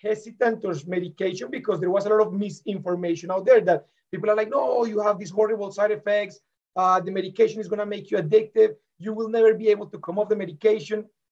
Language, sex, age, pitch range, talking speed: English, male, 40-59, 185-225 Hz, 225 wpm